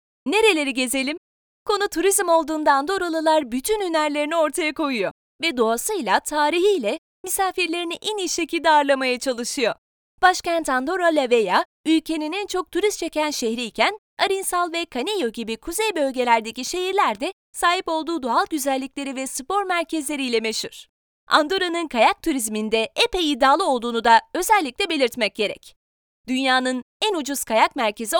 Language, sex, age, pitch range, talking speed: Turkish, female, 30-49, 265-360 Hz, 125 wpm